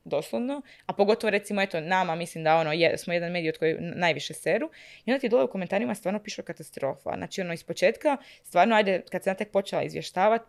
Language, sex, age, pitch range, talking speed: Croatian, female, 20-39, 160-205 Hz, 200 wpm